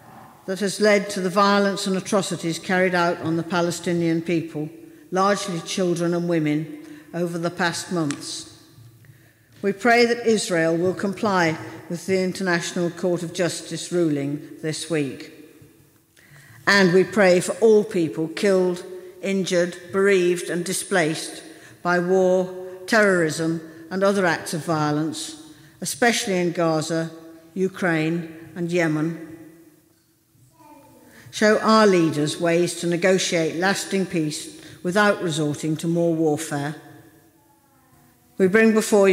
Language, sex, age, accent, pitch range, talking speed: English, female, 50-69, British, 160-185 Hz, 120 wpm